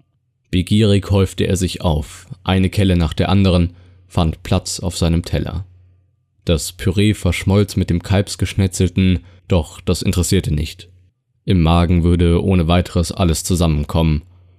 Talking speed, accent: 135 wpm, German